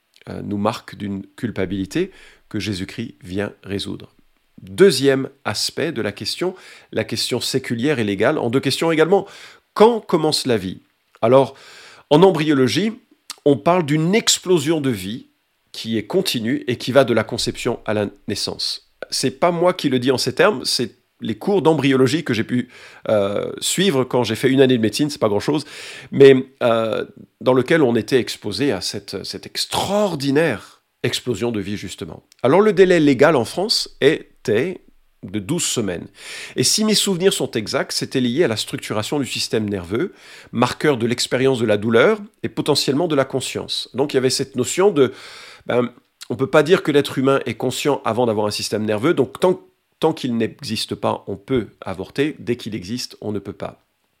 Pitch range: 110-150 Hz